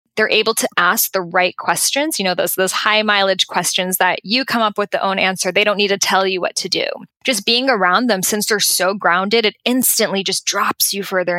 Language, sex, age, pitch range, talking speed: English, female, 10-29, 185-225 Hz, 235 wpm